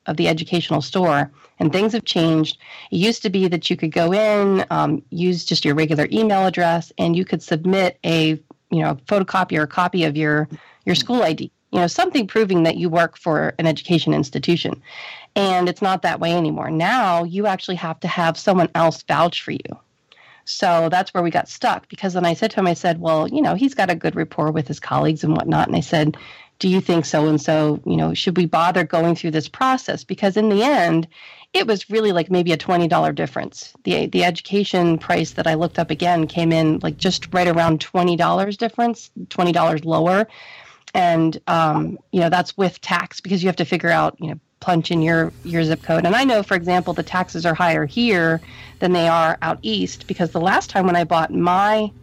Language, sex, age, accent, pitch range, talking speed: English, female, 40-59, American, 160-190 Hz, 215 wpm